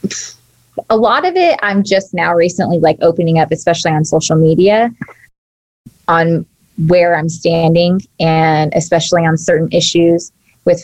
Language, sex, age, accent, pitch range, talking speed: English, female, 20-39, American, 160-180 Hz, 140 wpm